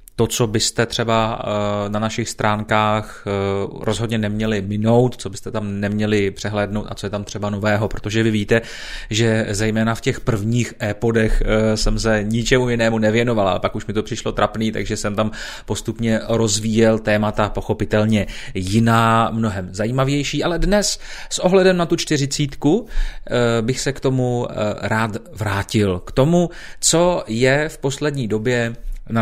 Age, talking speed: 30-49, 150 wpm